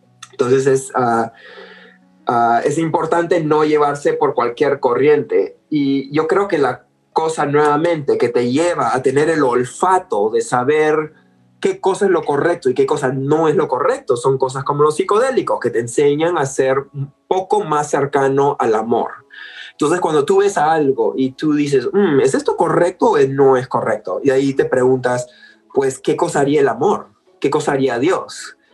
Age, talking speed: 20-39, 180 wpm